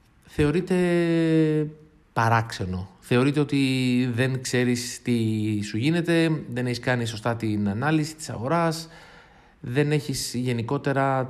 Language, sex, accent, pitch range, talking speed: Greek, male, native, 105-140 Hz, 105 wpm